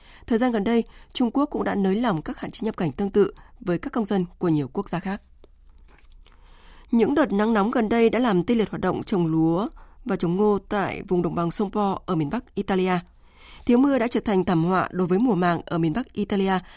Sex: female